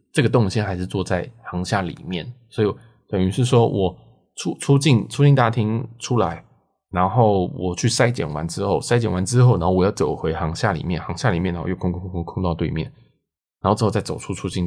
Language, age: Chinese, 20-39